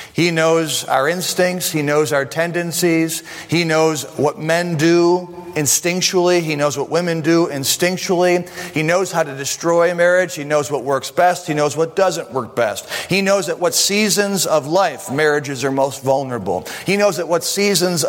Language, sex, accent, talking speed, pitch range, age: English, male, American, 175 wpm, 130-170 Hz, 40-59